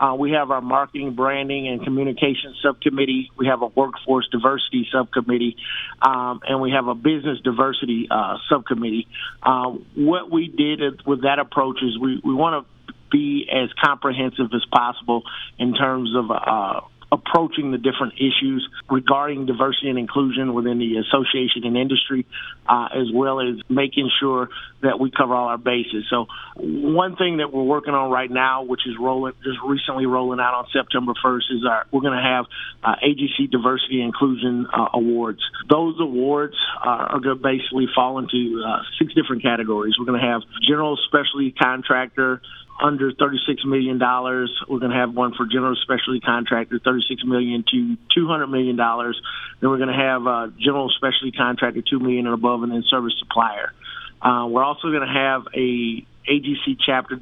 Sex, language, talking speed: male, English, 175 wpm